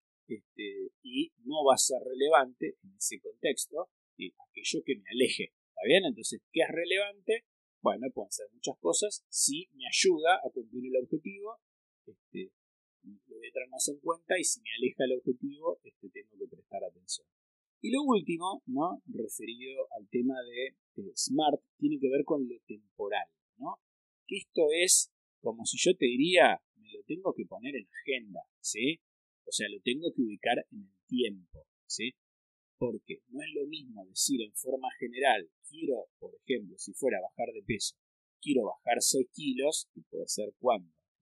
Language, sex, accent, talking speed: Spanish, male, Argentinian, 175 wpm